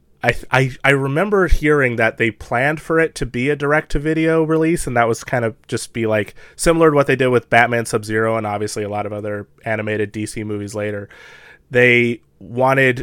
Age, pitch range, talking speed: 20-39, 110-135 Hz, 200 wpm